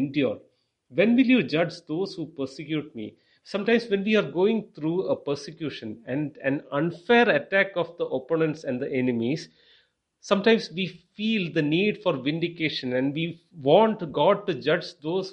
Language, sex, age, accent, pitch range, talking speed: English, male, 40-59, Indian, 155-195 Hz, 160 wpm